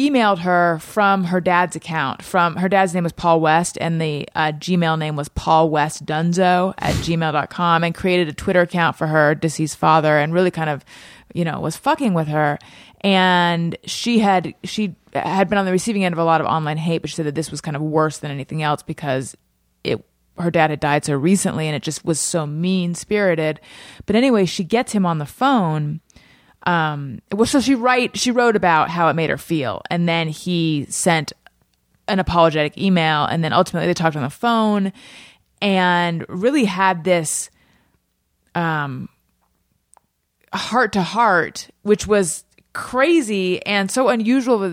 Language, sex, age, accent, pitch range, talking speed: English, female, 30-49, American, 155-200 Hz, 185 wpm